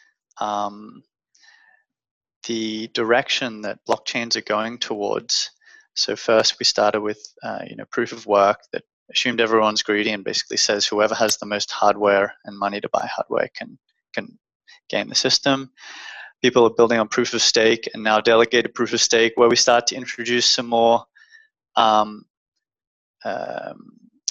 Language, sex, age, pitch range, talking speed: English, male, 20-39, 115-155 Hz, 155 wpm